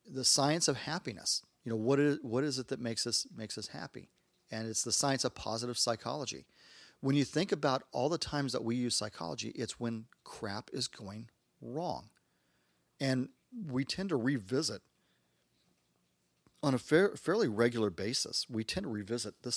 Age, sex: 40-59, male